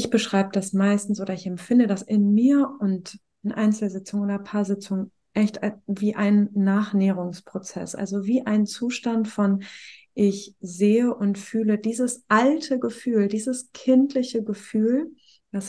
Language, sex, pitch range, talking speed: German, female, 205-235 Hz, 140 wpm